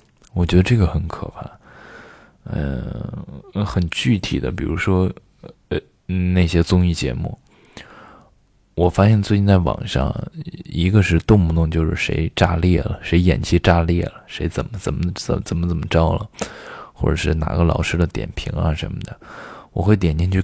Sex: male